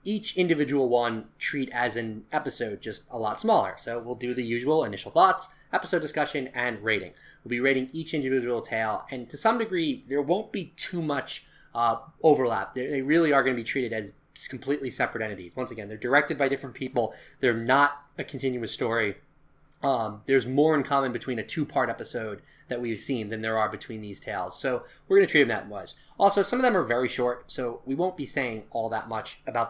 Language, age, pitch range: English, 20-39, 120-150 Hz